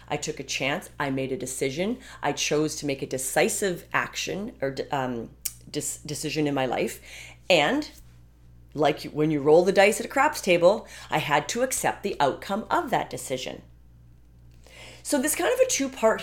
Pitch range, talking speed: 135-180 Hz, 175 wpm